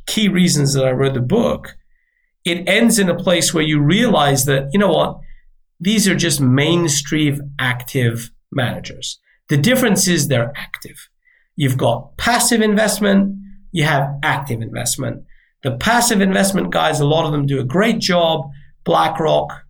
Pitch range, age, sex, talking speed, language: 135-180 Hz, 50-69, male, 155 wpm, English